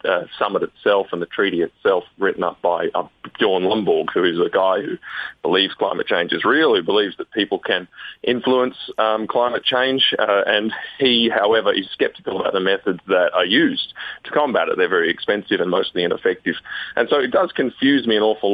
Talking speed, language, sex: 195 wpm, English, male